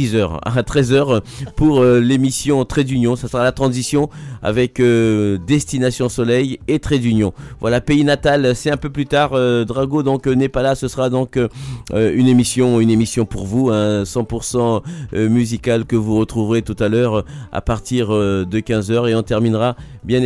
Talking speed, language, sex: 170 wpm, French, male